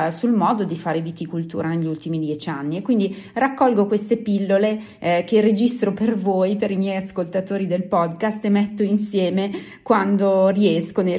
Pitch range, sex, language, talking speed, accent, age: 170-200 Hz, female, Italian, 165 wpm, native, 30-49